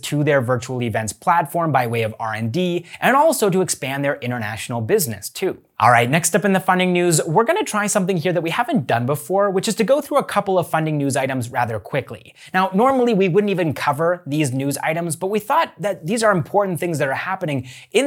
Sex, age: male, 20-39